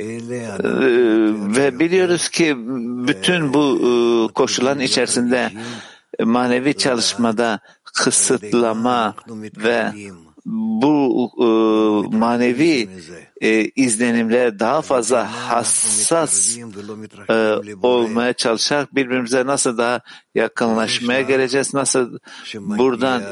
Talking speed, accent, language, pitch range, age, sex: 65 wpm, native, Turkish, 110-135 Hz, 60-79, male